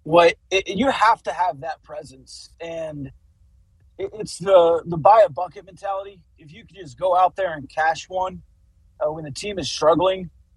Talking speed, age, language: 180 wpm, 30-49, English